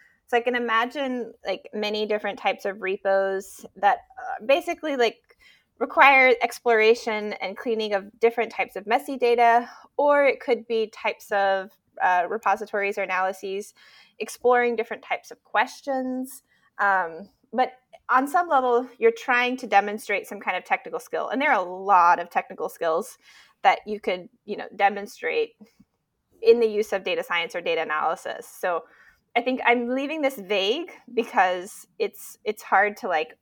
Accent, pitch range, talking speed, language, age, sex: American, 195-255 Hz, 160 wpm, English, 20-39, female